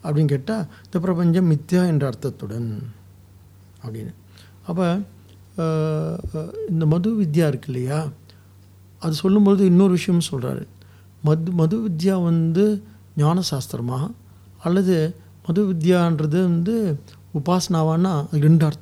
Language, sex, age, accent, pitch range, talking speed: English, male, 60-79, Indian, 105-165 Hz, 75 wpm